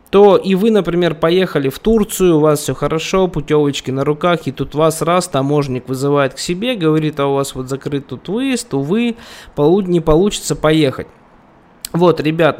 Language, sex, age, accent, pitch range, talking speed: Russian, male, 20-39, native, 140-175 Hz, 170 wpm